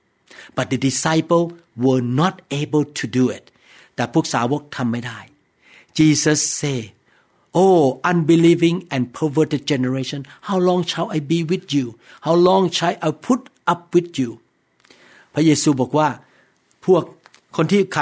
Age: 60-79